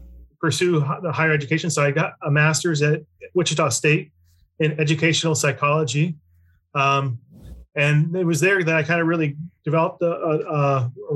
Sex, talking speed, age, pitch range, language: male, 155 wpm, 30-49, 140-160 Hz, English